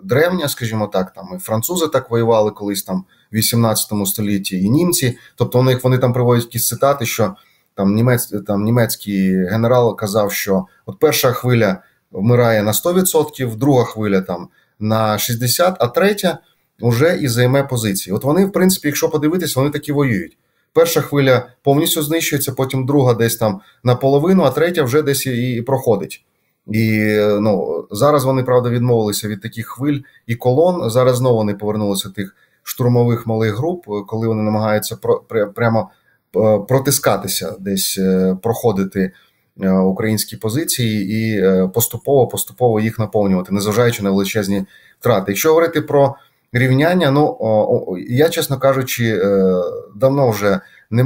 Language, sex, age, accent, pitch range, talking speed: Ukrainian, male, 30-49, native, 105-135 Hz, 145 wpm